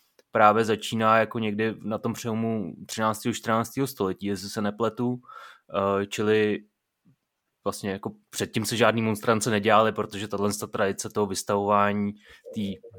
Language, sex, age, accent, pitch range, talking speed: Czech, male, 20-39, native, 95-105 Hz, 130 wpm